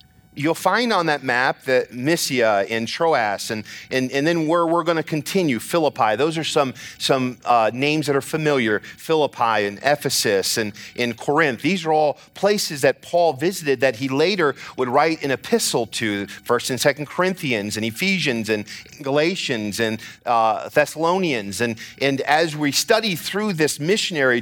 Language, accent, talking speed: English, American, 170 wpm